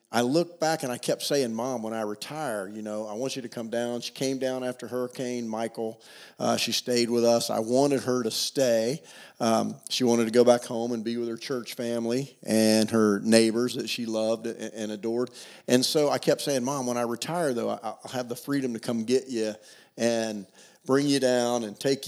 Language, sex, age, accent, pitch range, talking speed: English, male, 40-59, American, 115-130 Hz, 220 wpm